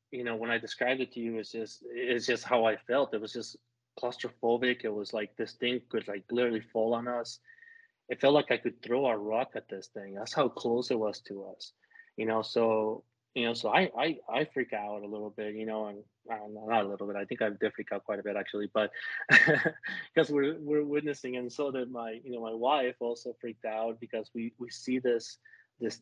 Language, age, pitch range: English, 20-39, 110-125 Hz